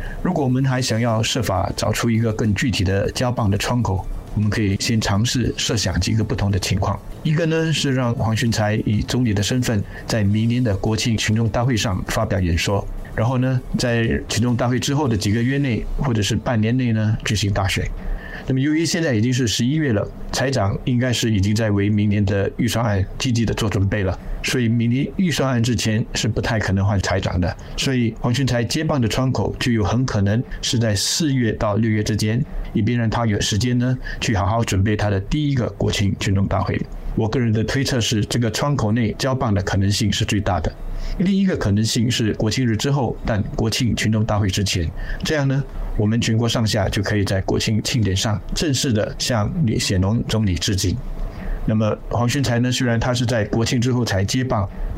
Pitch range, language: 105-125 Hz, Chinese